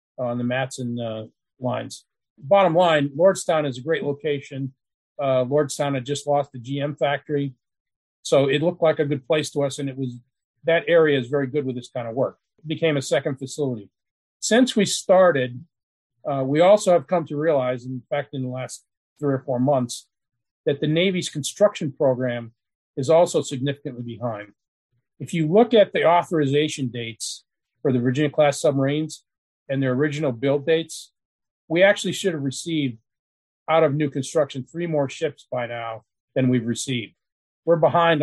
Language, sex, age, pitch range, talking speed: English, male, 40-59, 125-160 Hz, 175 wpm